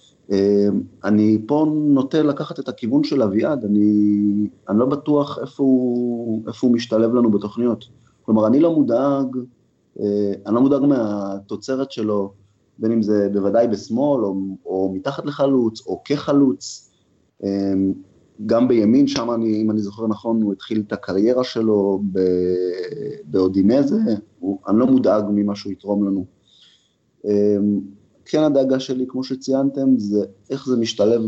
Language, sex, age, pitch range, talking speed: Hebrew, male, 30-49, 100-120 Hz, 135 wpm